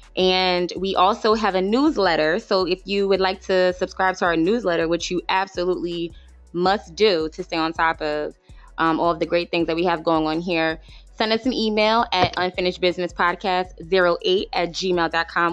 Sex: female